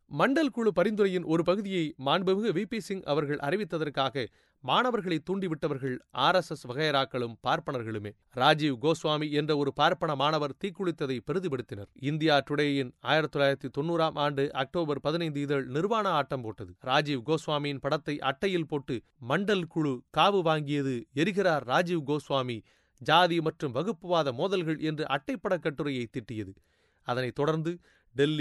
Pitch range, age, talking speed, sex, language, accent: 135-175 Hz, 30-49, 115 wpm, male, Tamil, native